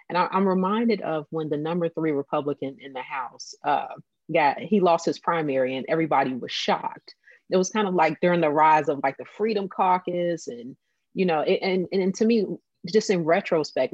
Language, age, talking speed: English, 30-49, 195 wpm